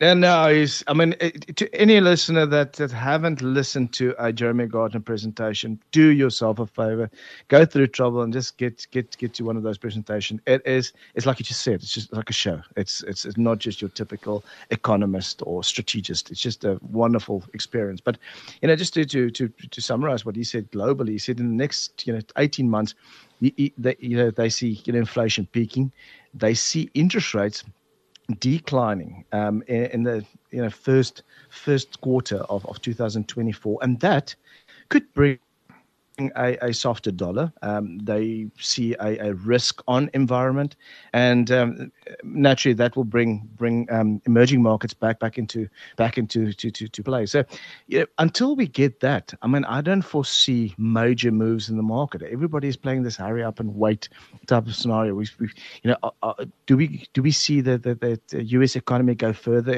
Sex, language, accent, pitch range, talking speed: male, English, South African, 110-130 Hz, 190 wpm